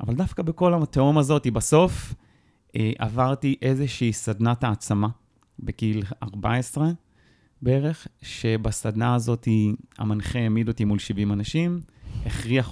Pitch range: 110-150 Hz